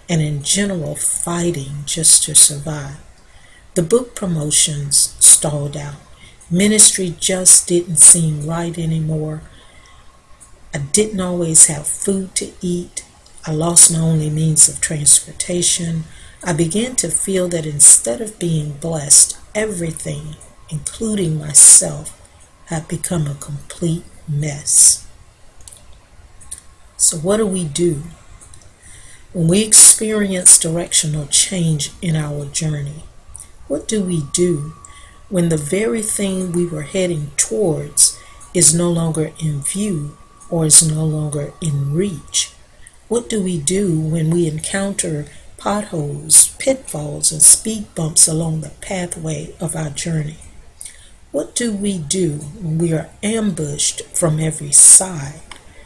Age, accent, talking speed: 50-69, American, 120 wpm